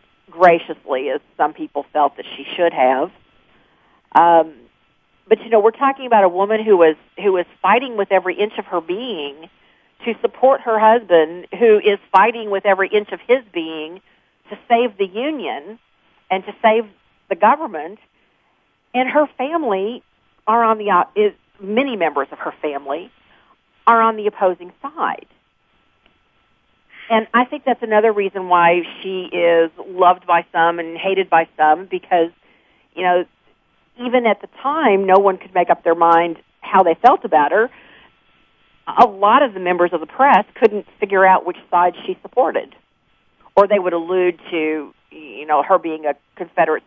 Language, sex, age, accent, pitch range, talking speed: English, female, 50-69, American, 165-220 Hz, 165 wpm